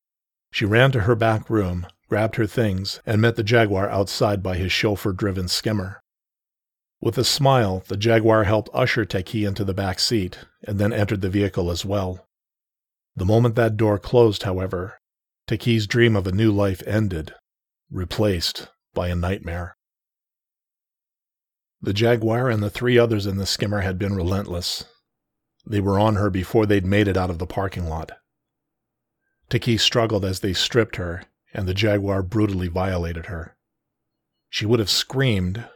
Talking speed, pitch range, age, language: 160 wpm, 95-110 Hz, 40-59, English